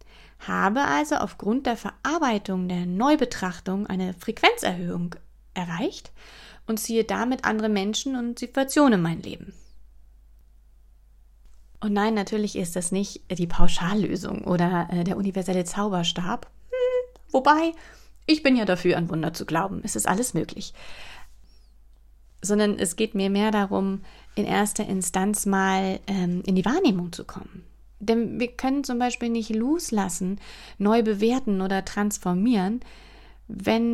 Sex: female